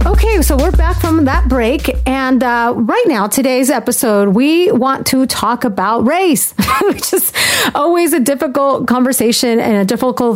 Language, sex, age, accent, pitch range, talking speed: English, female, 30-49, American, 210-265 Hz, 160 wpm